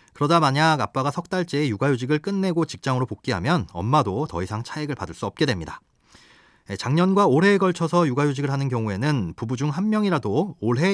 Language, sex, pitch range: Korean, male, 115-170 Hz